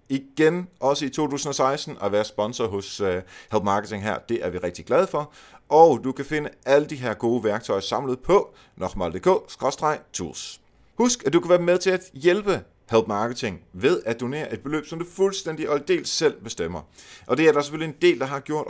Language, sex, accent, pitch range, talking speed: Danish, male, native, 95-140 Hz, 200 wpm